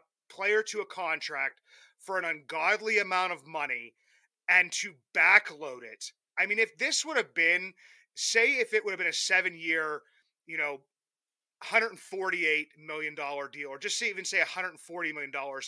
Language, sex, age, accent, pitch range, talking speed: English, male, 30-49, American, 155-215 Hz, 170 wpm